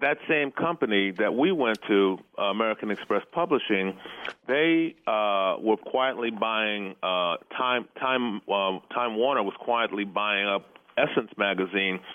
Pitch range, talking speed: 100-125 Hz, 140 wpm